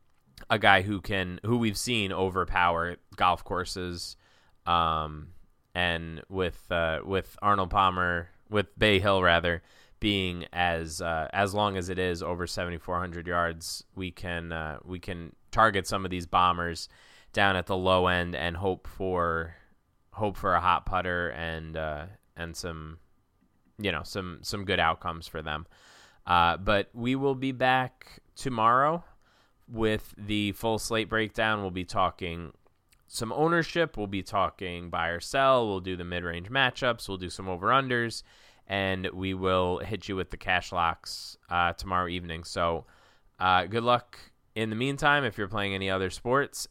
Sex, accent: male, American